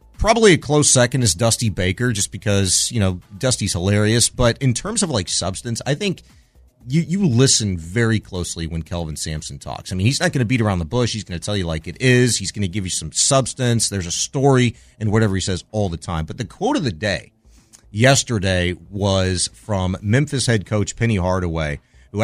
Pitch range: 95-125 Hz